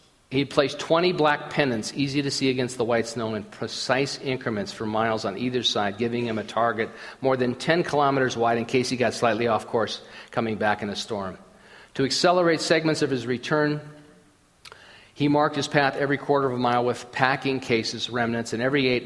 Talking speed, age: 200 wpm, 50-69